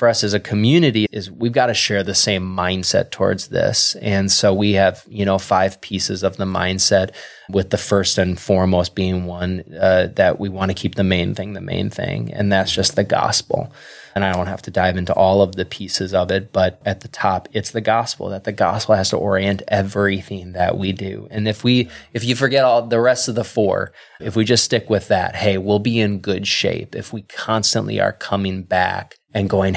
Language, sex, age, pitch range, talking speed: English, male, 20-39, 95-110 Hz, 225 wpm